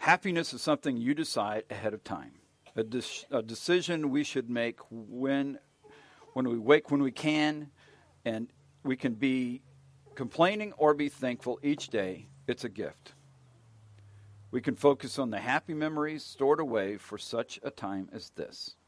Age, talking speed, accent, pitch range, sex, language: 50-69, 150 wpm, American, 105-145 Hz, male, English